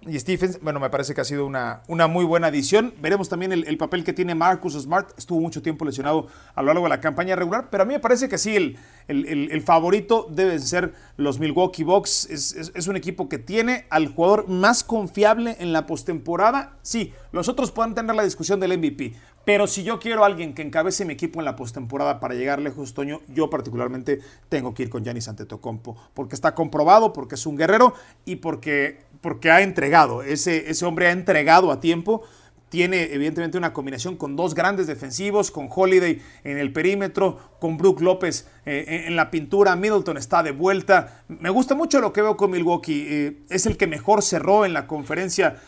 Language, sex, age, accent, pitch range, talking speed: Spanish, male, 40-59, Mexican, 150-195 Hz, 210 wpm